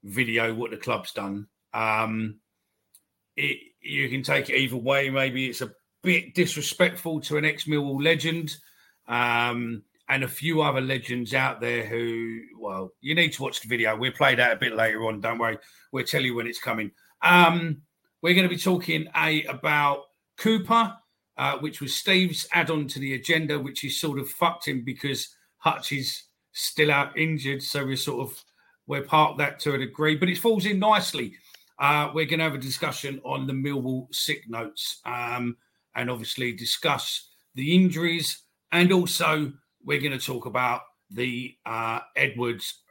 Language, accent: English, British